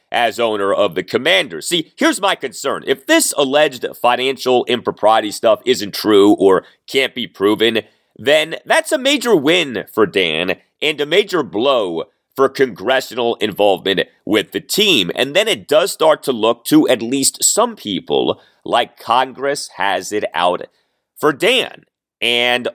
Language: English